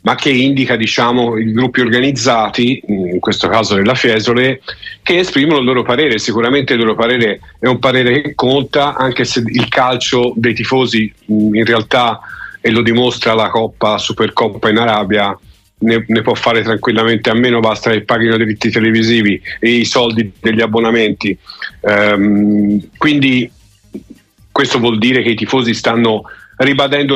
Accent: native